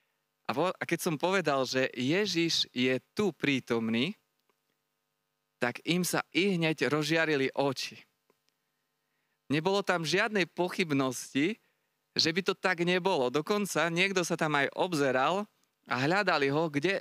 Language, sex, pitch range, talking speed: Slovak, male, 130-175 Hz, 125 wpm